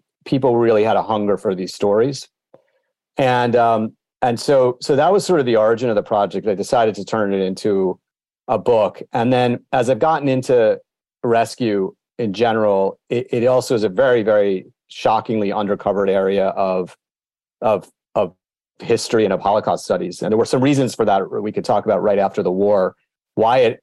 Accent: American